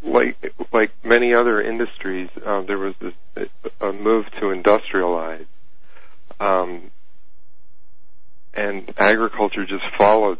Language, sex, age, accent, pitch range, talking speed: English, male, 50-69, American, 85-100 Hz, 105 wpm